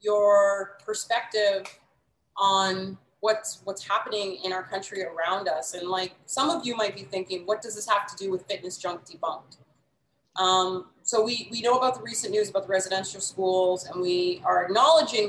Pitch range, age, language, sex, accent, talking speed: 180-220 Hz, 30-49, English, female, American, 180 wpm